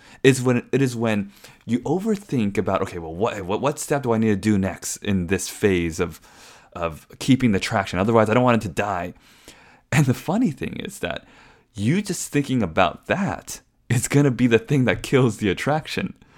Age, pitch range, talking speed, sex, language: 20-39, 100-130 Hz, 205 wpm, male, English